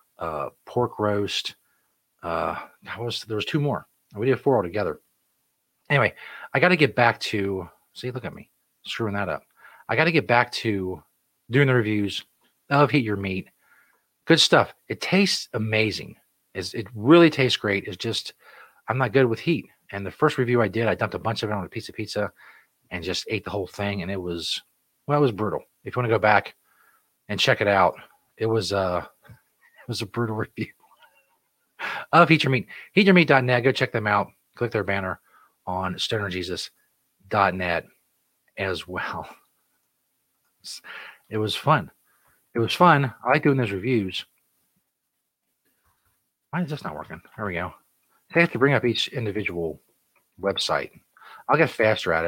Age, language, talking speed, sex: 40-59, English, 175 wpm, male